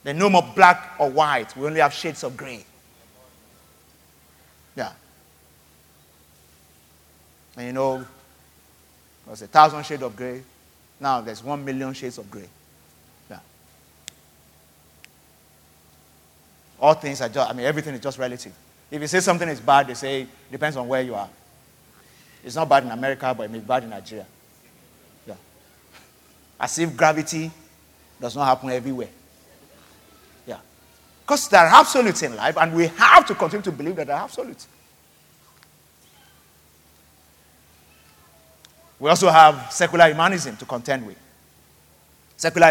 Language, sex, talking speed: English, male, 140 wpm